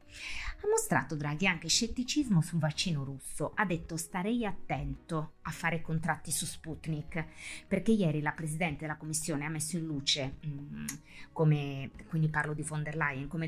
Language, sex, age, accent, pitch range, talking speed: Italian, female, 30-49, native, 145-180 Hz, 160 wpm